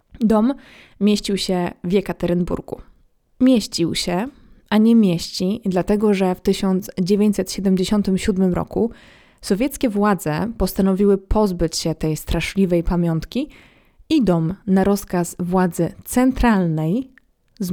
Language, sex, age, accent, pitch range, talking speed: Polish, female, 20-39, native, 175-215 Hz, 100 wpm